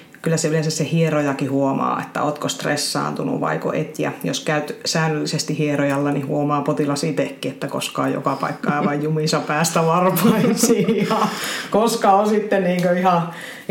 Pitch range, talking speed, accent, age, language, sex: 150-180 Hz, 140 wpm, native, 30-49, Finnish, female